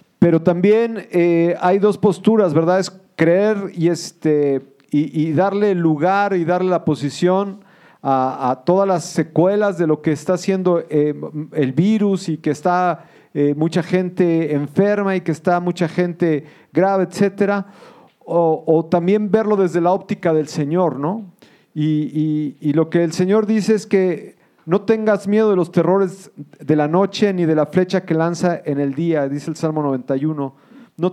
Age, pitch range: 40-59, 155-195 Hz